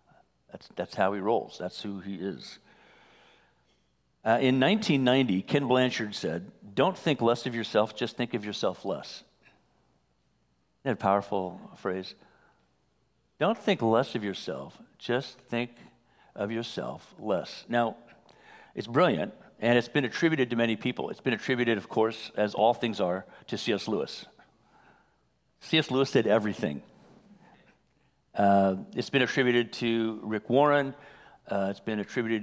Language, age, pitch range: English, 50-69, 105-130 Hz